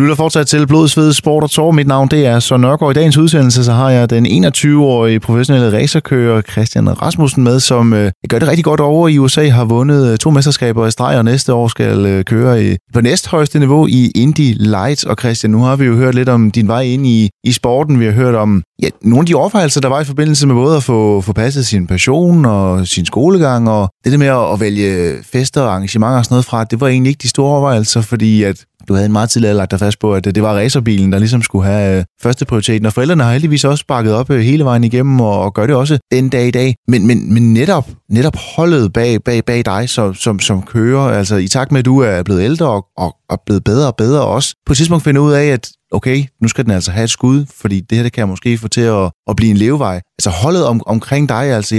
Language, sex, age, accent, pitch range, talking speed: Danish, male, 30-49, native, 110-140 Hz, 255 wpm